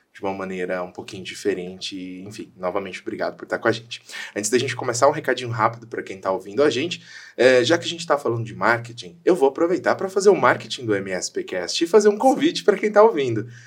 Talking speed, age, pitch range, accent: 230 wpm, 20-39, 110-170 Hz, Brazilian